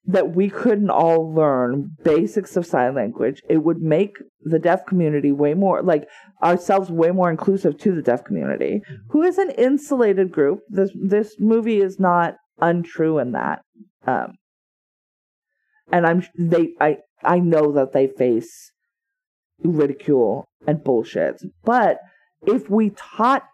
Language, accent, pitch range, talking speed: English, American, 165-215 Hz, 145 wpm